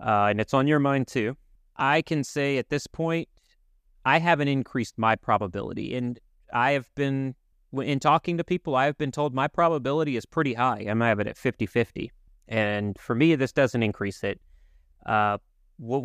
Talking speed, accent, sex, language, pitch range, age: 185 wpm, American, male, English, 110-145 Hz, 30-49